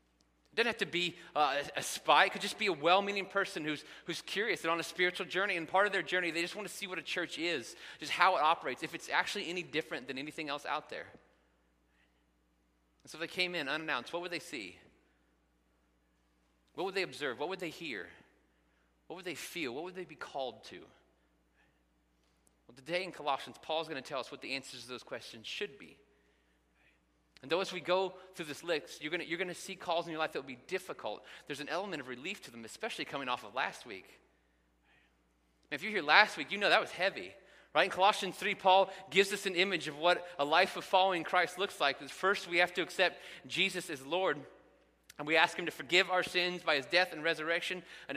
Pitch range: 110-180 Hz